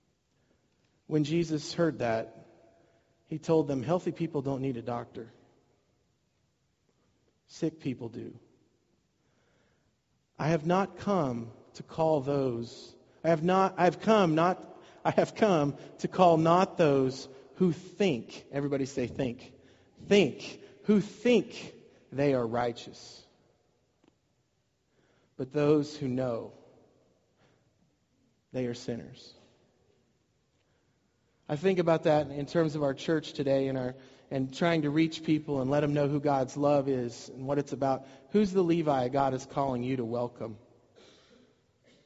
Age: 40-59